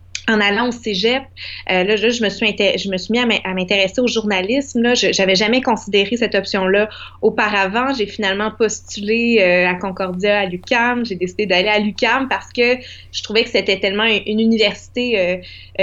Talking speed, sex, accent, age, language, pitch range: 200 wpm, female, Canadian, 20-39, French, 190-225 Hz